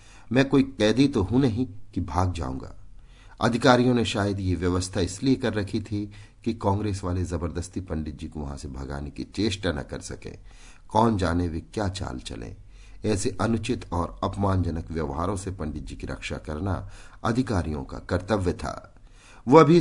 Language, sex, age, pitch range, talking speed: Hindi, male, 50-69, 90-115 Hz, 170 wpm